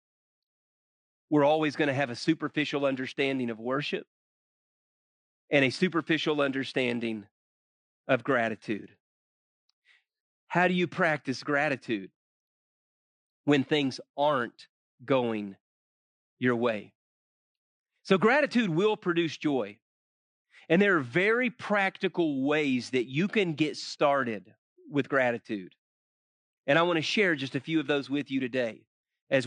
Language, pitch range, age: English, 135-220 Hz, 40-59